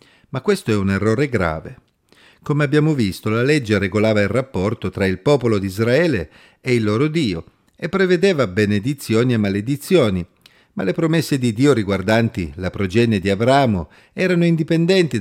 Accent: native